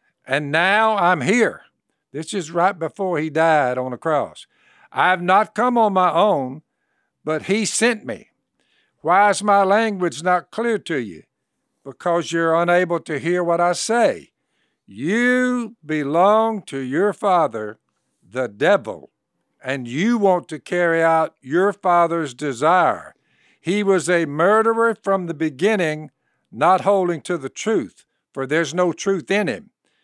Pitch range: 155-205 Hz